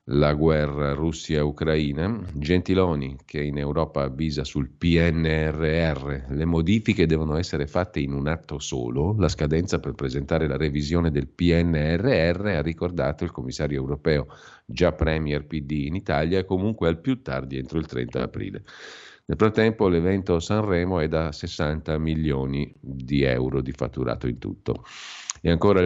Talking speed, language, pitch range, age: 140 wpm, Italian, 75-85 Hz, 50-69